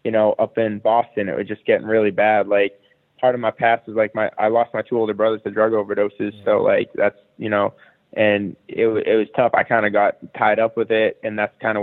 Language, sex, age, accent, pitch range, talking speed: English, male, 20-39, American, 105-120 Hz, 255 wpm